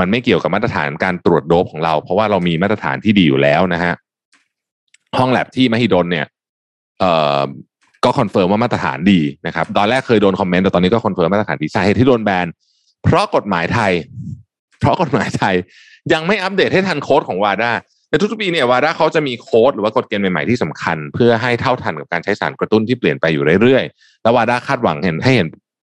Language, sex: Thai, male